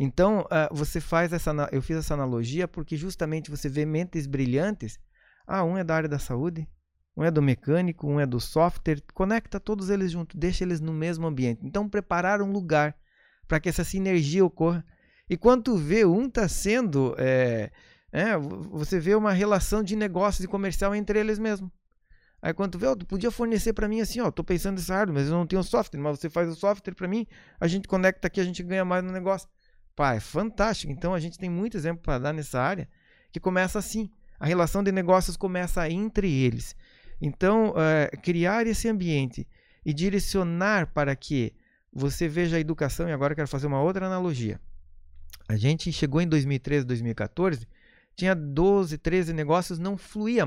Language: Portuguese